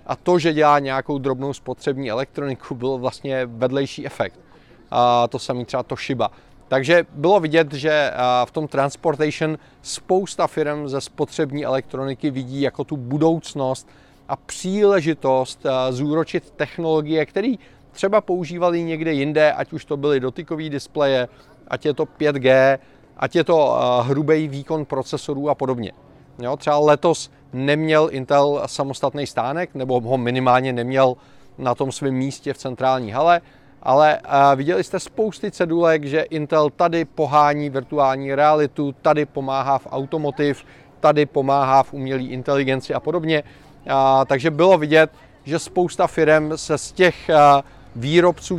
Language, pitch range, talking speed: Czech, 135-155 Hz, 135 wpm